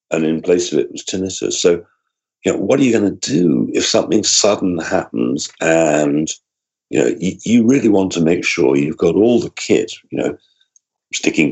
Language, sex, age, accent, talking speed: English, male, 50-69, British, 200 wpm